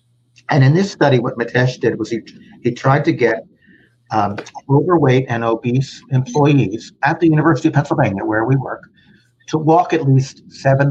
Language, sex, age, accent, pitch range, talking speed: English, male, 50-69, American, 120-145 Hz, 170 wpm